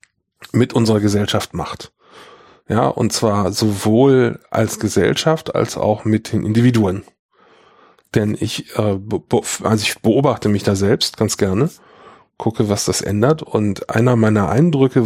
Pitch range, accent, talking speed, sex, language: 105-130 Hz, German, 130 wpm, male, German